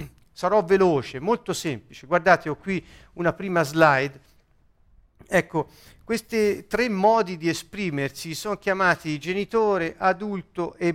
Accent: native